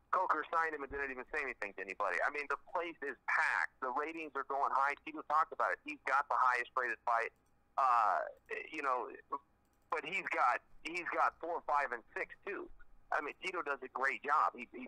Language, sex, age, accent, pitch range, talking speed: English, male, 40-59, American, 135-195 Hz, 215 wpm